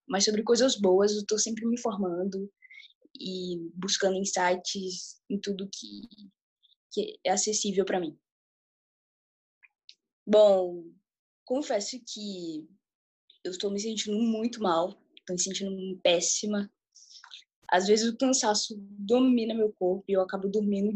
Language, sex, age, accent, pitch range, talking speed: Portuguese, female, 10-29, Brazilian, 190-245 Hz, 125 wpm